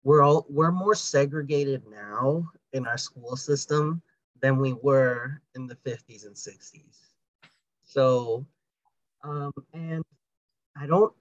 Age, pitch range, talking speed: 30-49, 130-155 Hz, 125 wpm